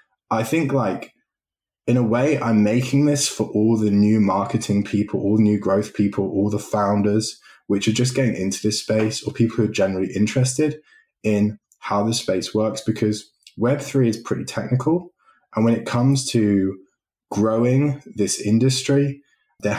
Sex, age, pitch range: male, 20-39, 100-125 Hz